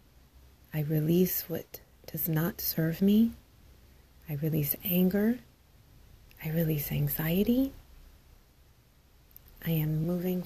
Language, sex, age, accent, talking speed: English, female, 30-49, American, 90 wpm